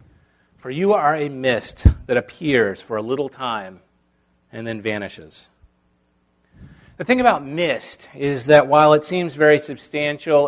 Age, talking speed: 30-49, 145 wpm